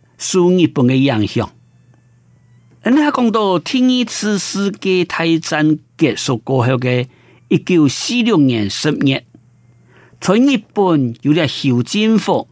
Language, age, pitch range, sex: Chinese, 50-69, 120-185 Hz, male